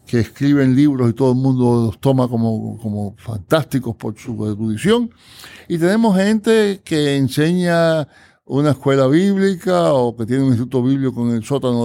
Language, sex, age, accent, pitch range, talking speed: Spanish, male, 60-79, American, 120-160 Hz, 160 wpm